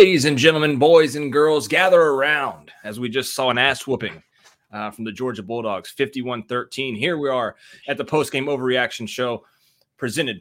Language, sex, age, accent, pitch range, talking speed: English, male, 30-49, American, 115-140 Hz, 180 wpm